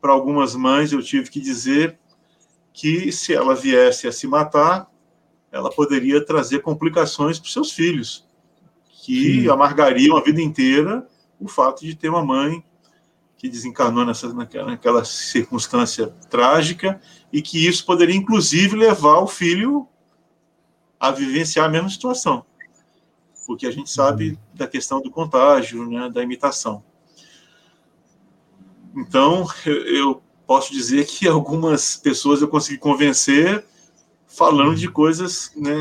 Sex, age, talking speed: male, 40-59, 130 wpm